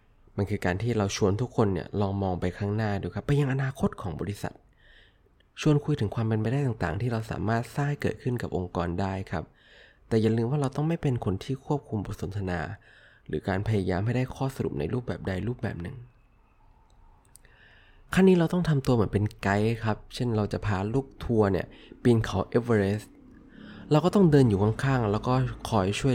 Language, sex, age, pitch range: Thai, male, 20-39, 100-135 Hz